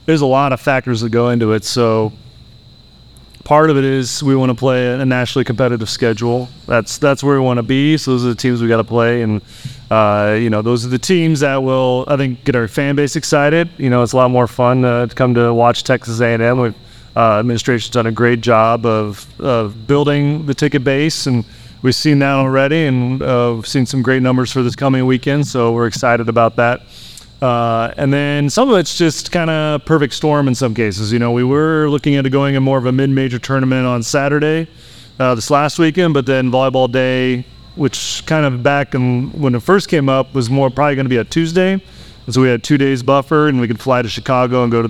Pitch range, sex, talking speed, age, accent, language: 120-140 Hz, male, 230 wpm, 30-49, American, English